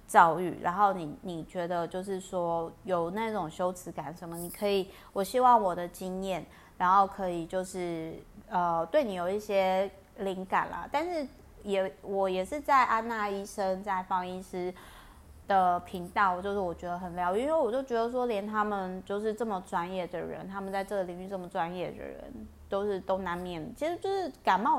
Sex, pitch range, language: female, 180-230 Hz, Chinese